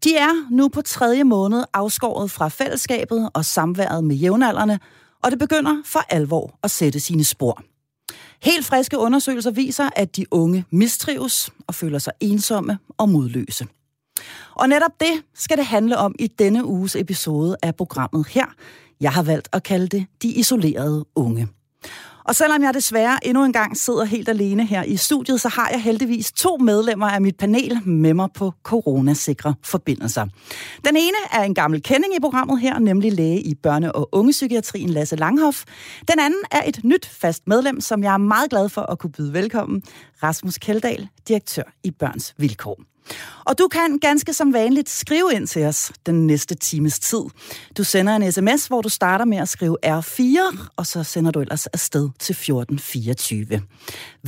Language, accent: Danish, native